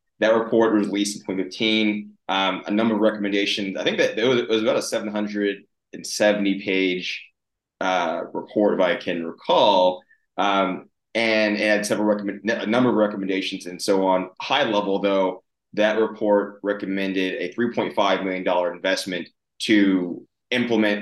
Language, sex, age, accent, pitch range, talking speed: English, male, 20-39, American, 95-105 Hz, 150 wpm